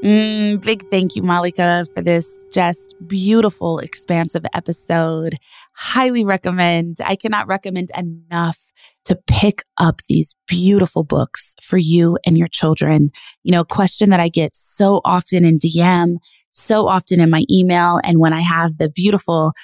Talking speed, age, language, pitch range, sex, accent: 155 wpm, 20-39, English, 170-200 Hz, female, American